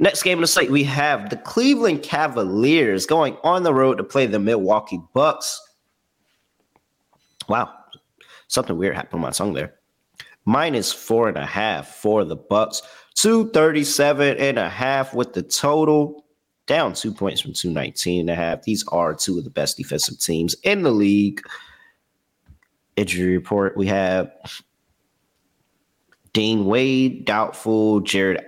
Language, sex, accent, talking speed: English, male, American, 145 wpm